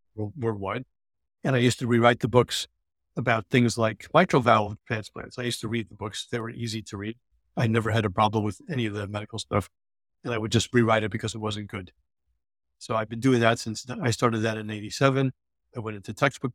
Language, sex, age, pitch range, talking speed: English, male, 50-69, 110-125 Hz, 220 wpm